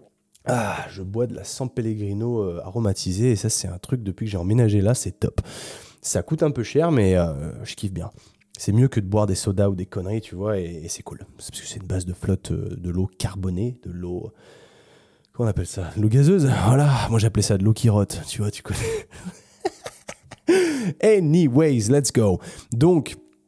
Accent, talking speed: French, 210 wpm